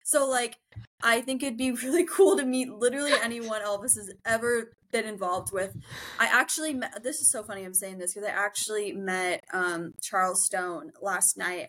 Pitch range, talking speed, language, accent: 180-235 Hz, 190 wpm, English, American